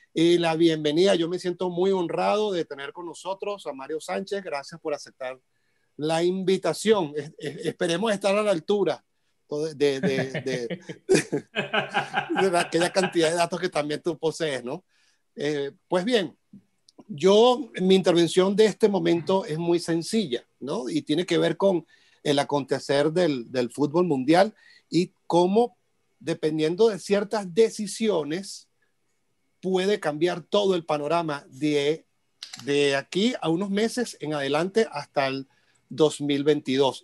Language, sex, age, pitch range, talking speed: Spanish, male, 40-59, 150-195 Hz, 140 wpm